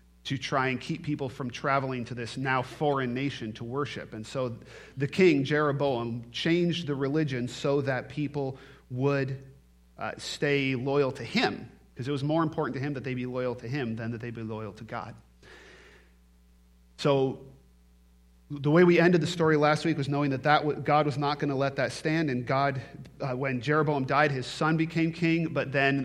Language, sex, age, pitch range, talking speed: English, male, 40-59, 130-150 Hz, 195 wpm